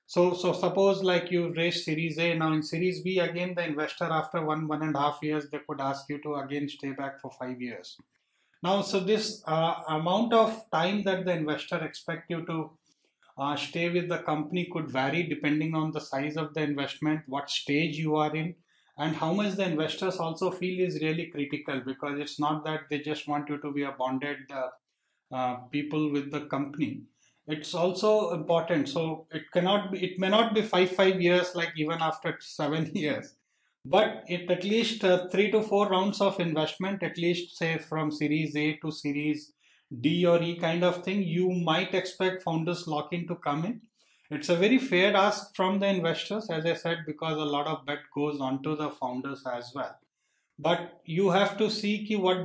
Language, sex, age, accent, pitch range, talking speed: English, male, 30-49, Indian, 150-180 Hz, 200 wpm